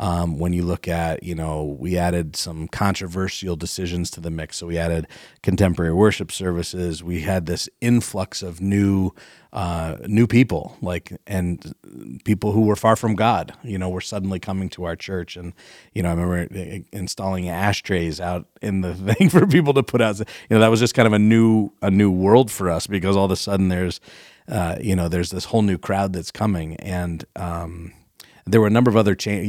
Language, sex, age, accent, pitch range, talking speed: English, male, 30-49, American, 85-110 Hz, 210 wpm